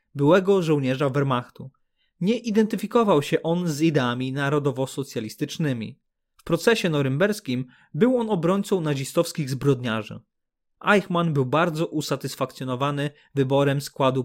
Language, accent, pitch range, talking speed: Polish, native, 130-175 Hz, 100 wpm